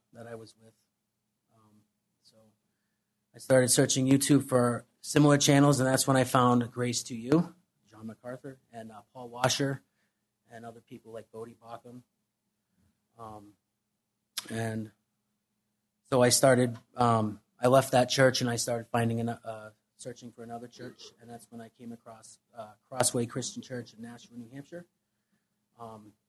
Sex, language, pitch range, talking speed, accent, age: male, English, 110-125 Hz, 155 wpm, American, 30-49